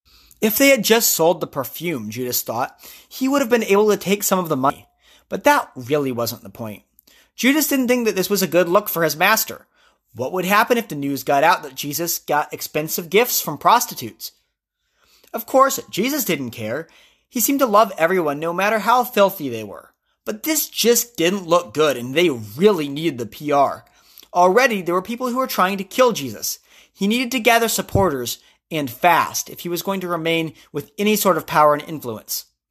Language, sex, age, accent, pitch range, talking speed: English, male, 30-49, American, 150-220 Hz, 205 wpm